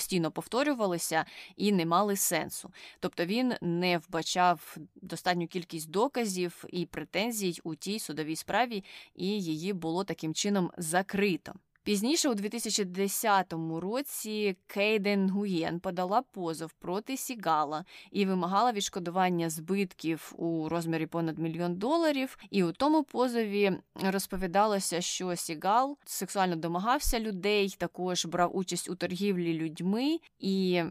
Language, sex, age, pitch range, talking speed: Ukrainian, female, 20-39, 165-205 Hz, 120 wpm